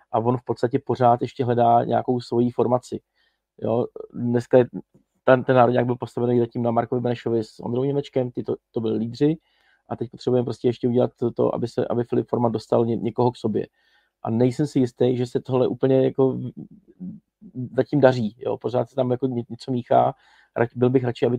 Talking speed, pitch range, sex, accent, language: 200 wpm, 120-130 Hz, male, native, Czech